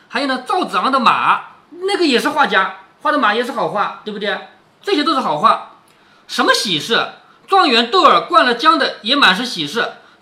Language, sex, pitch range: Chinese, male, 190-285 Hz